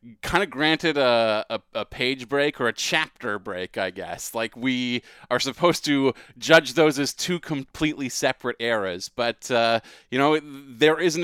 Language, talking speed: English, 175 wpm